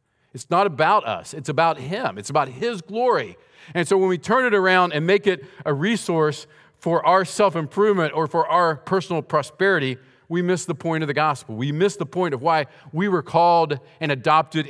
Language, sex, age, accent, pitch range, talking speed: English, male, 50-69, American, 130-175 Hz, 200 wpm